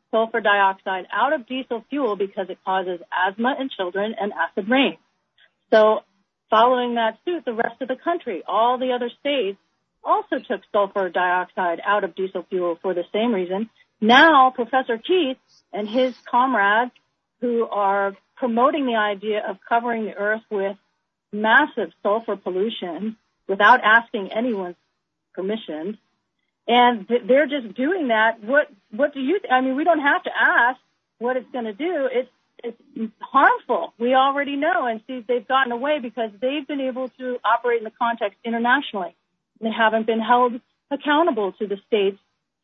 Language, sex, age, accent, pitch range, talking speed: English, female, 40-59, American, 210-260 Hz, 160 wpm